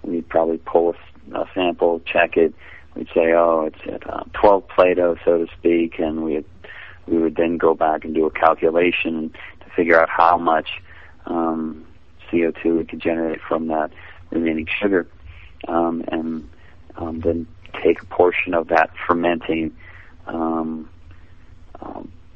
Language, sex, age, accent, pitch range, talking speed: English, male, 40-59, American, 80-85 Hz, 150 wpm